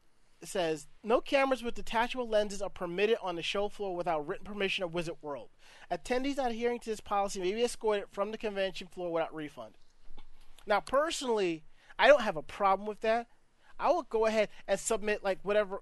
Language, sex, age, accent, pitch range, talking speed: English, male, 30-49, American, 175-225 Hz, 185 wpm